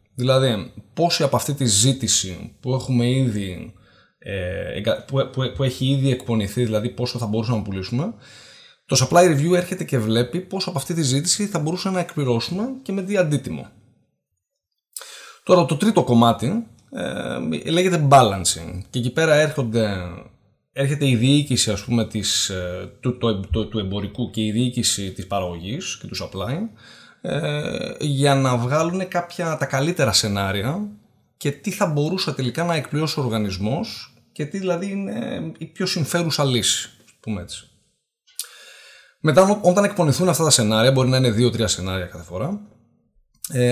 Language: Greek